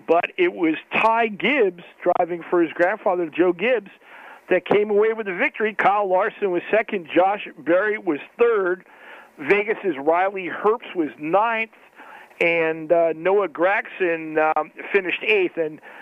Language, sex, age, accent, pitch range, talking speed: English, male, 50-69, American, 160-205 Hz, 140 wpm